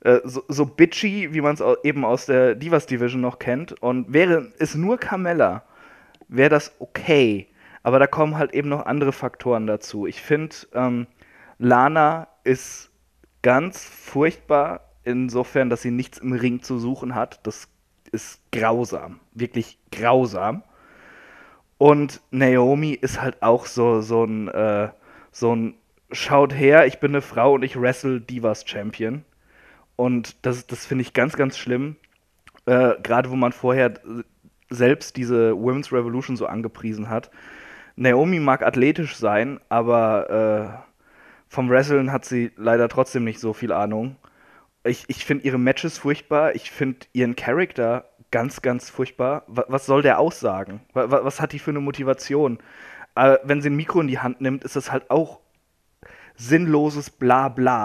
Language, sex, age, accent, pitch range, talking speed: German, male, 20-39, German, 120-145 Hz, 150 wpm